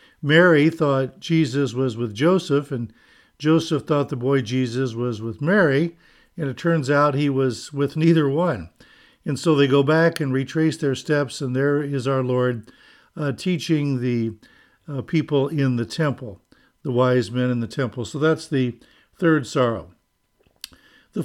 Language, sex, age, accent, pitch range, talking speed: English, male, 60-79, American, 125-155 Hz, 165 wpm